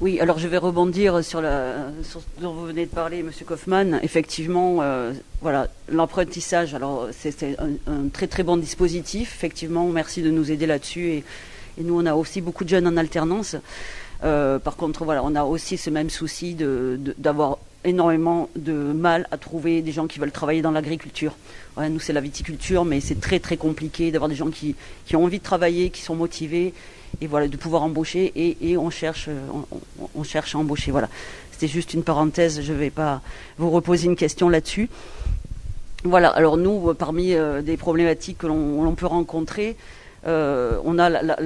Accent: French